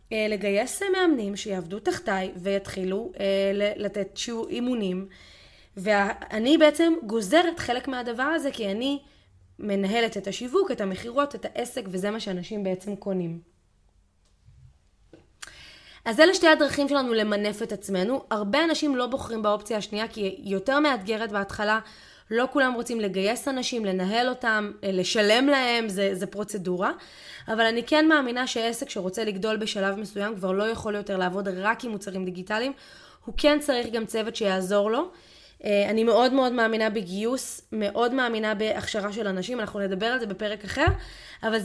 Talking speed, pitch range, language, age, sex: 145 wpm, 200-245 Hz, Hebrew, 20-39, female